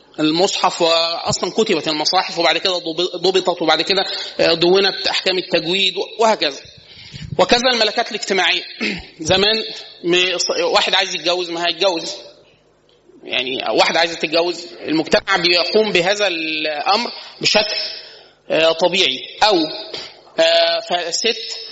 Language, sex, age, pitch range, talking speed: Arabic, male, 30-49, 170-215 Hz, 95 wpm